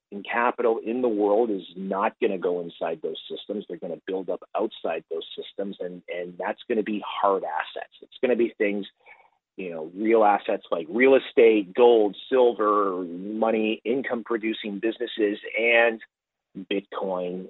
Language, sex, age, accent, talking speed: English, male, 30-49, American, 165 wpm